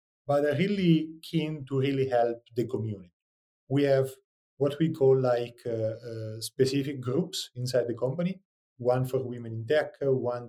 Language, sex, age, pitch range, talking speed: English, male, 30-49, 110-140 Hz, 160 wpm